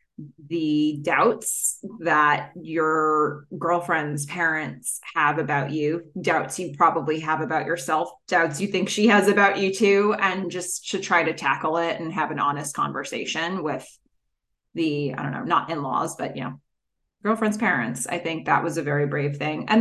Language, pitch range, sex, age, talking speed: English, 155-210 Hz, female, 20-39, 170 wpm